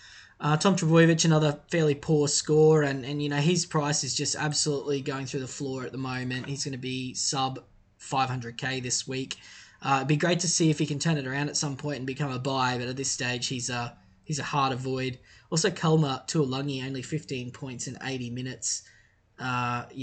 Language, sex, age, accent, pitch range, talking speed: English, male, 10-29, Australian, 130-155 Hz, 215 wpm